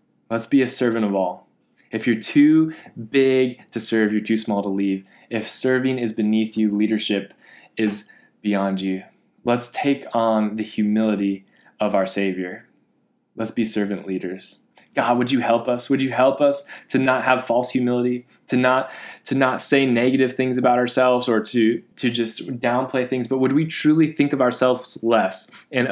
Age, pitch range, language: 20-39, 110-130 Hz, English